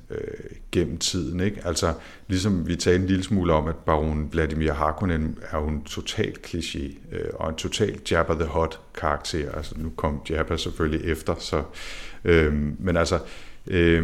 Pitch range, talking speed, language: 75-90 Hz, 155 wpm, Danish